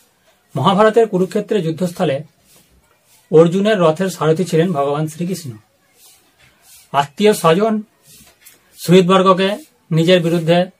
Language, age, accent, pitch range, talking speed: Bengali, 40-59, native, 155-190 Hz, 70 wpm